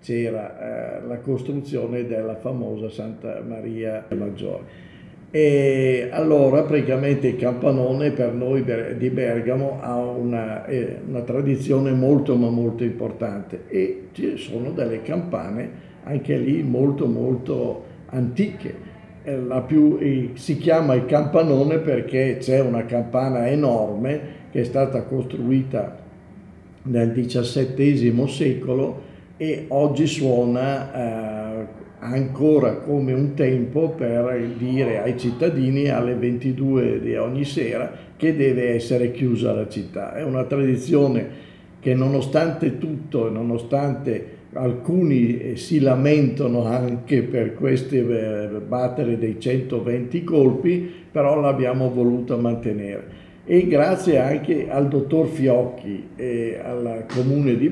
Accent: native